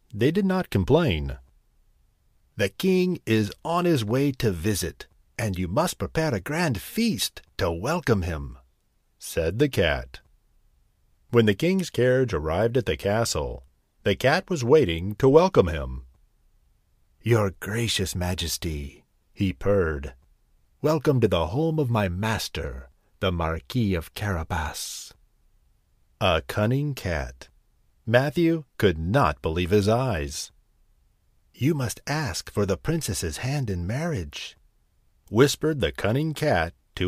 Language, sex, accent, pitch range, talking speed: English, male, American, 85-135 Hz, 130 wpm